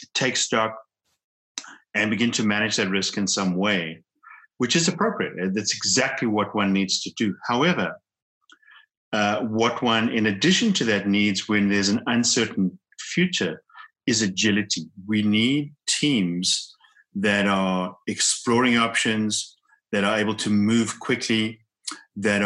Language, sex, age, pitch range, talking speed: English, male, 50-69, 100-130 Hz, 135 wpm